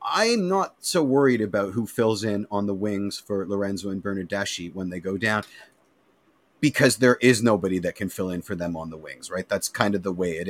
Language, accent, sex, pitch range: English, American, male, 95-115 Hz